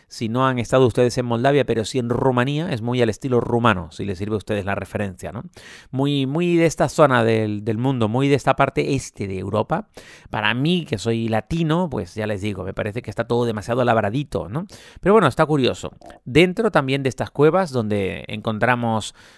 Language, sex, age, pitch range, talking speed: Spanish, male, 40-59, 105-140 Hz, 210 wpm